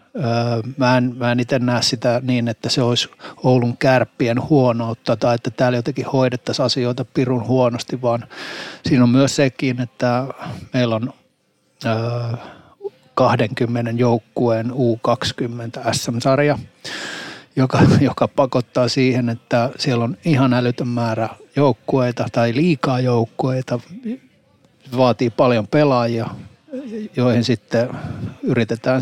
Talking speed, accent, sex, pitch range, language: 105 wpm, native, male, 115-130 Hz, Finnish